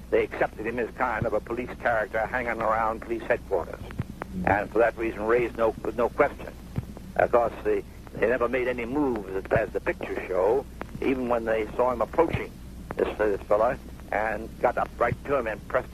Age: 70-89